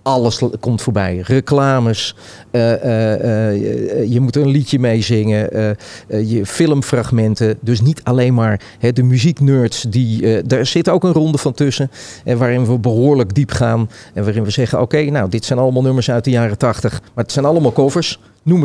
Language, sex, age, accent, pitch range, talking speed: Dutch, male, 40-59, Dutch, 115-150 Hz, 190 wpm